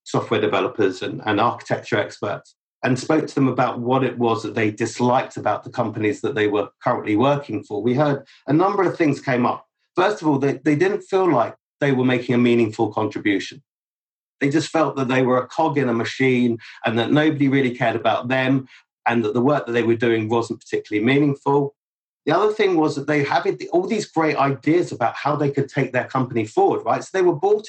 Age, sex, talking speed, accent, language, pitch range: 40-59, male, 220 wpm, British, English, 120-150 Hz